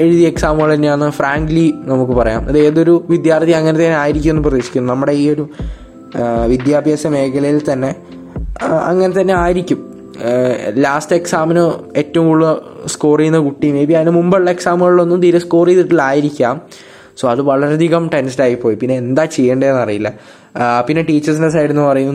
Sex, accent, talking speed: male, native, 135 wpm